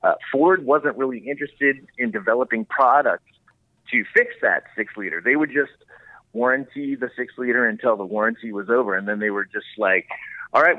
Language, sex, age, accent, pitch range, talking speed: English, male, 30-49, American, 115-145 Hz, 170 wpm